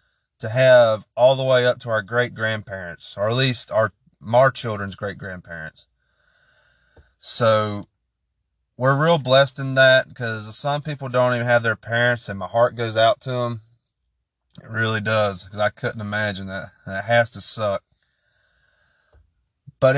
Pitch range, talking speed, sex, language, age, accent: 115-155 Hz, 150 wpm, male, English, 30-49, American